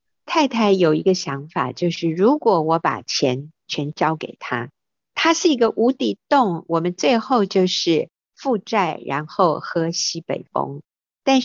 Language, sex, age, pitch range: Chinese, female, 50-69, 150-195 Hz